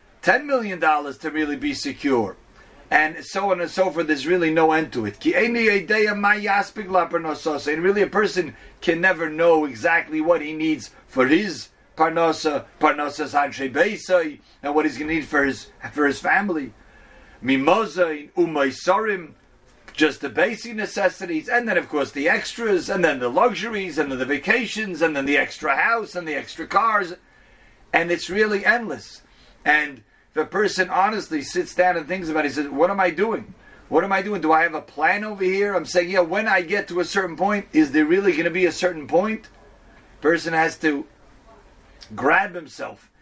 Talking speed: 185 wpm